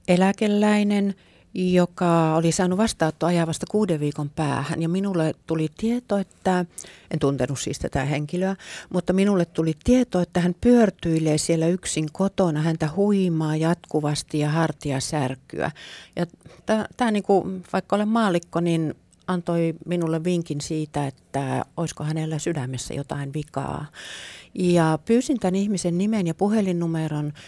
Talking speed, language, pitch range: 130 wpm, Finnish, 150-185 Hz